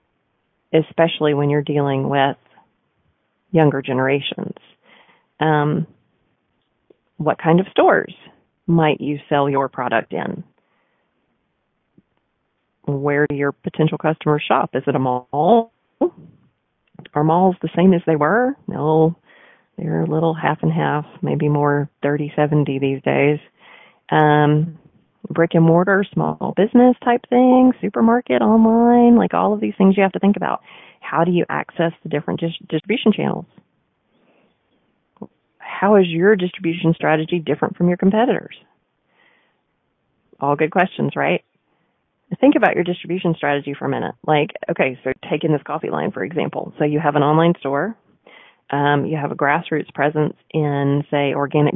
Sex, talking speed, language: female, 140 wpm, English